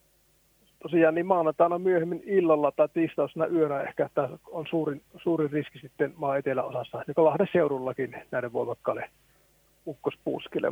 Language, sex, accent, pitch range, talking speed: Finnish, male, native, 150-170 Hz, 130 wpm